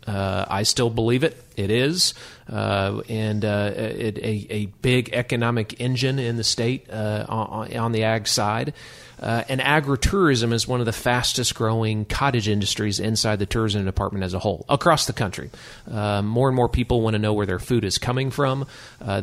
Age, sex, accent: 40-59, male, American